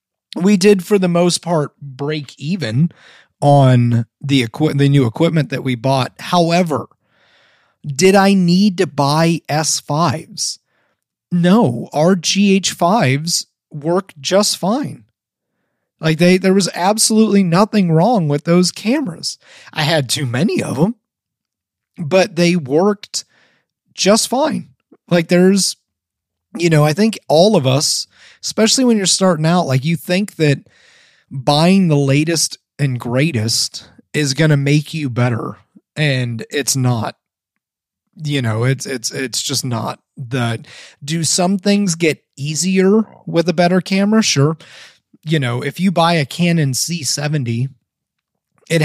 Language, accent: English, American